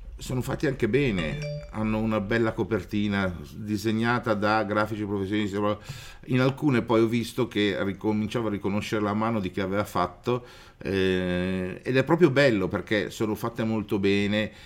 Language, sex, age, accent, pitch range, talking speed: Italian, male, 50-69, native, 95-115 Hz, 150 wpm